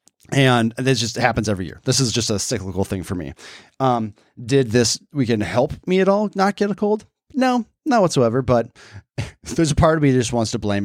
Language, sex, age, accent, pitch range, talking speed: English, male, 30-49, American, 105-140 Hz, 225 wpm